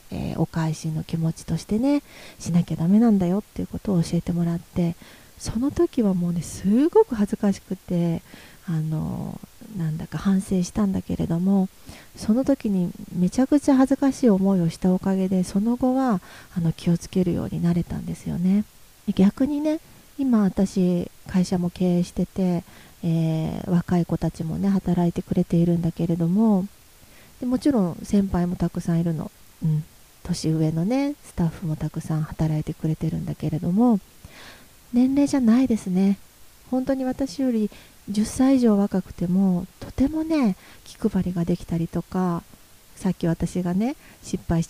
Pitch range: 170-215 Hz